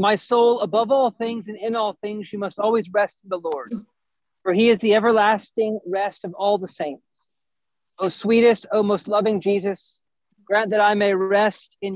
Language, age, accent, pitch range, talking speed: English, 40-59, American, 185-210 Hz, 200 wpm